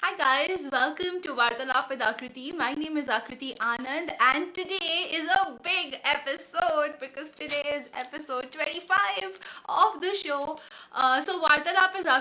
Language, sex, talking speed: Hindi, female, 145 wpm